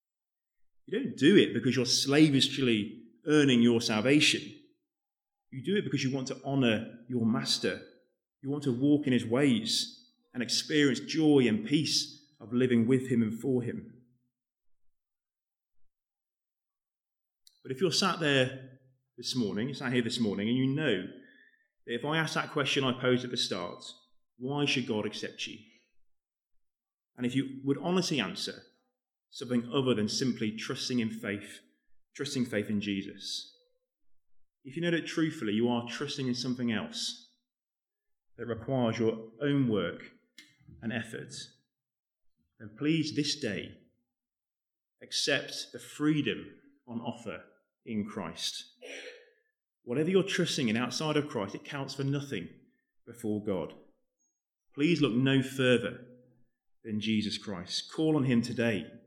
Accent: British